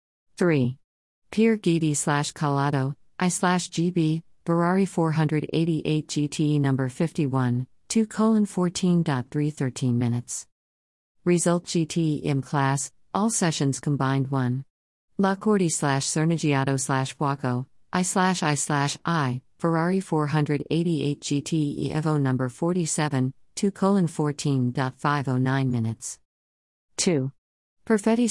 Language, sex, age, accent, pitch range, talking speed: English, female, 50-69, American, 130-170 Hz, 100 wpm